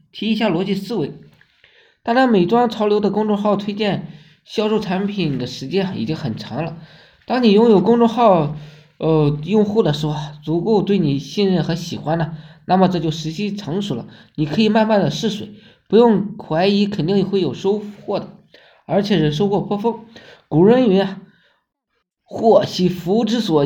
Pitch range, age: 155-205 Hz, 20-39